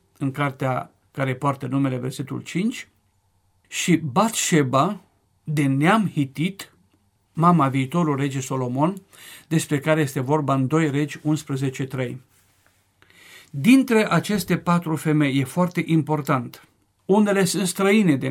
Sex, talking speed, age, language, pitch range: male, 115 wpm, 50-69, Romanian, 130-165 Hz